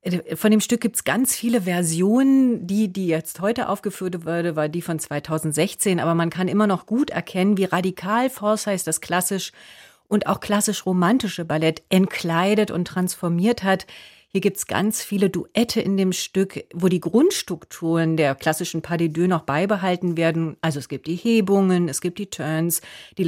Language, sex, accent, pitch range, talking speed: German, female, German, 170-205 Hz, 175 wpm